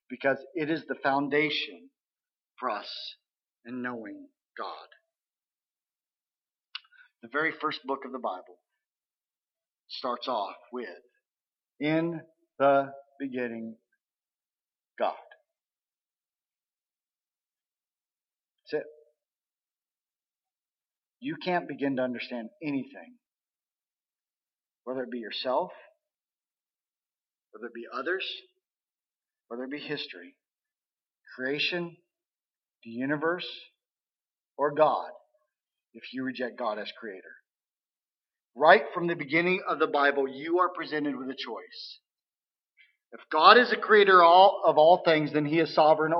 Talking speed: 105 wpm